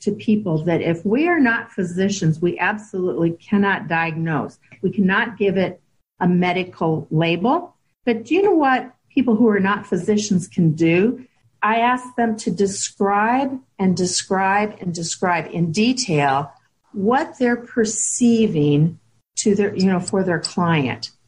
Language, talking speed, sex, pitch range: English, 145 wpm, female, 175-230 Hz